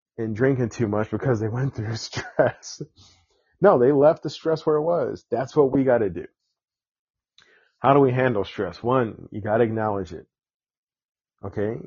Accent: American